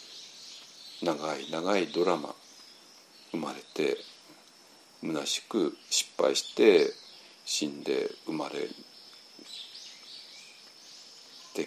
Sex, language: male, Japanese